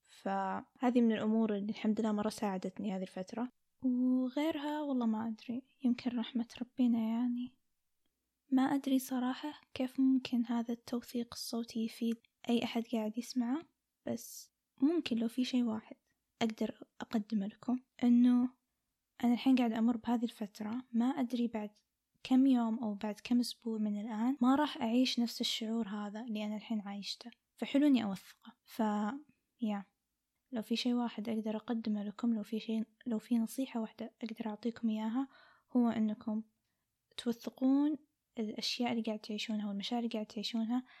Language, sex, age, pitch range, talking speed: Arabic, female, 10-29, 220-250 Hz, 150 wpm